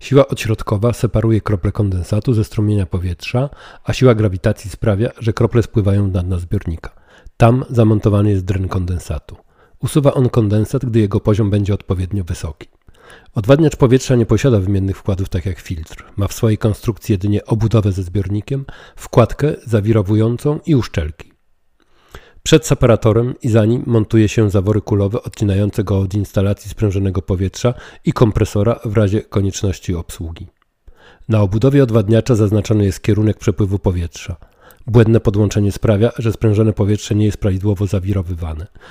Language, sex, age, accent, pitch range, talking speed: Polish, male, 40-59, native, 100-115 Hz, 140 wpm